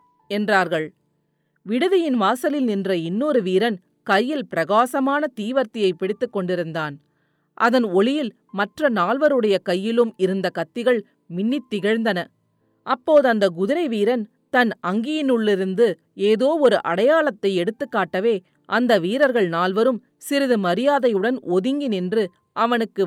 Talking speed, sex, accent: 95 wpm, female, native